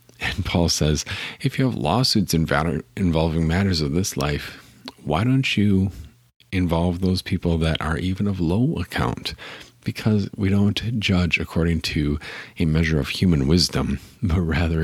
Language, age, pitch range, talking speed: English, 50-69, 75-90 Hz, 150 wpm